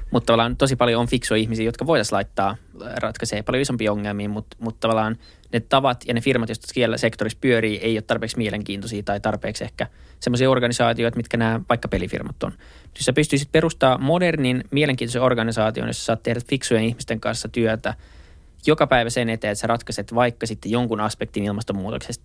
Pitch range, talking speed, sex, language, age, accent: 105-125 Hz, 180 wpm, male, Finnish, 20-39, native